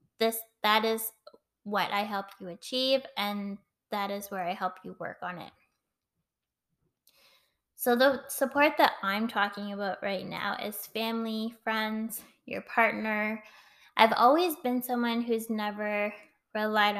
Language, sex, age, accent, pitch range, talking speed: English, female, 10-29, American, 195-225 Hz, 140 wpm